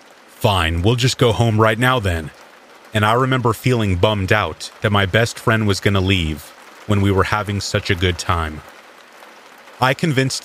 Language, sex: English, male